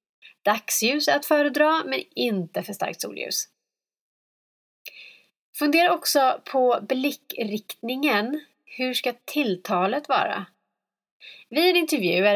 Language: Swedish